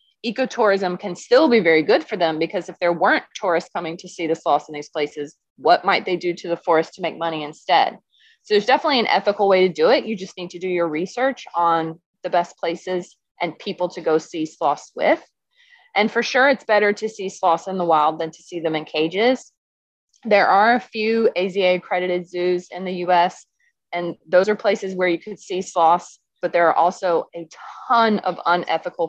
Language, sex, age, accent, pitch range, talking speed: English, female, 20-39, American, 170-225 Hz, 215 wpm